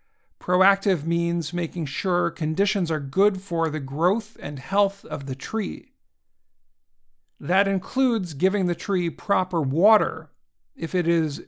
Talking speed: 130 wpm